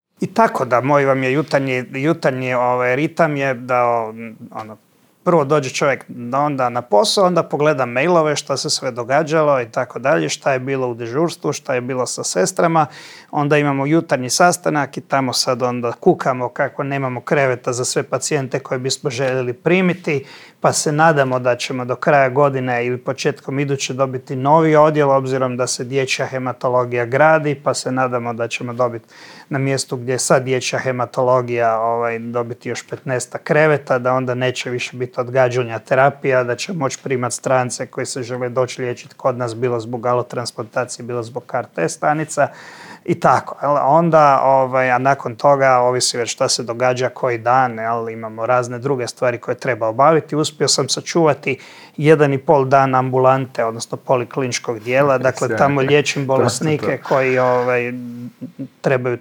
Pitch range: 125-145 Hz